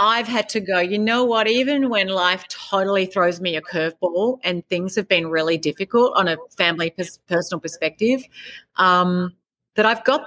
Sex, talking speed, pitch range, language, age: female, 180 wpm, 170-210 Hz, English, 40-59